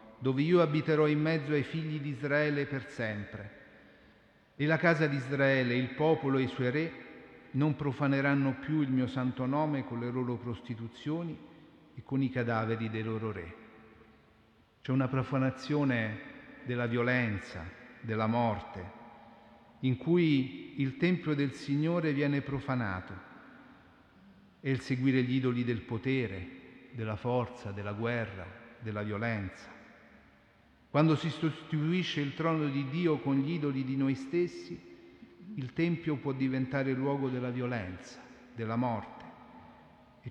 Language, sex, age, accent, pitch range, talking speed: Italian, male, 40-59, native, 115-140 Hz, 135 wpm